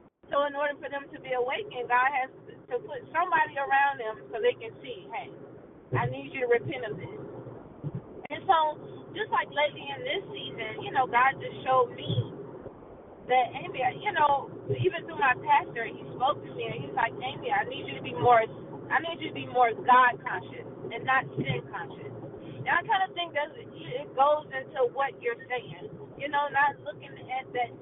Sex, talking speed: female, 205 wpm